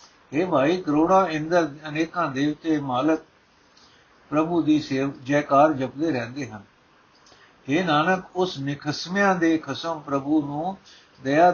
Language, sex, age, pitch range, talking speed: Punjabi, male, 60-79, 140-170 Hz, 125 wpm